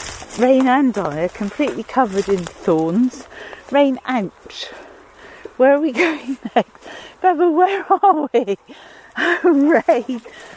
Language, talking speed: English, 120 wpm